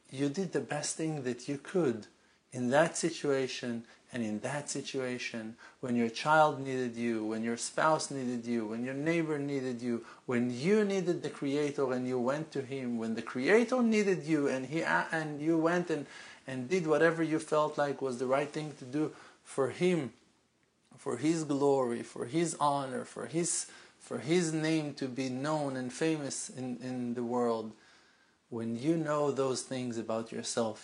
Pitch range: 120-160 Hz